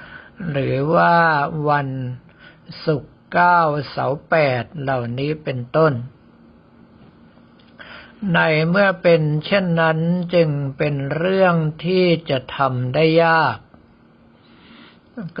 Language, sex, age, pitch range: Thai, male, 60-79, 140-170 Hz